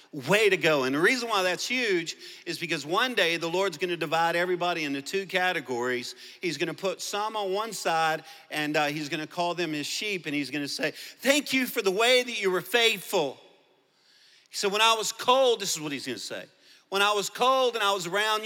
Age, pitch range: 40-59, 150-225 Hz